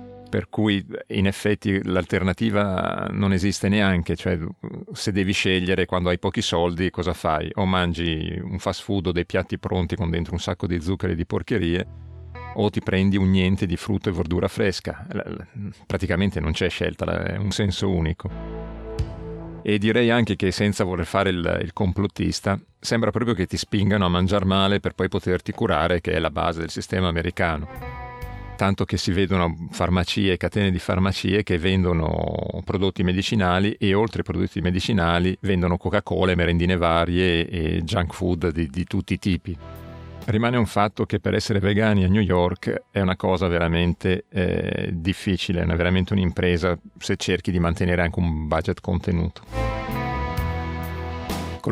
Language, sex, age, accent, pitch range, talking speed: Italian, male, 40-59, native, 85-100 Hz, 160 wpm